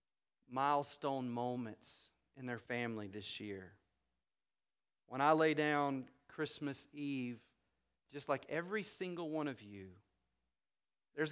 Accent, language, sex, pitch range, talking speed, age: American, English, male, 105-165 Hz, 110 wpm, 40-59